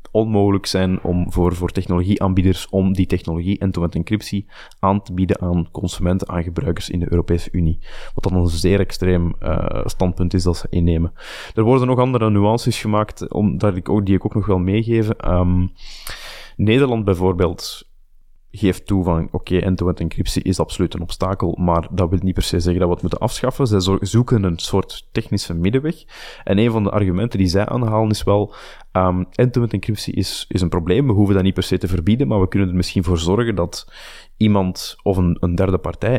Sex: male